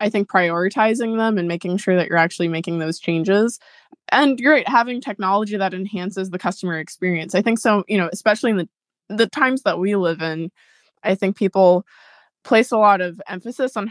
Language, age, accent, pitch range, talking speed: English, 20-39, American, 170-210 Hz, 200 wpm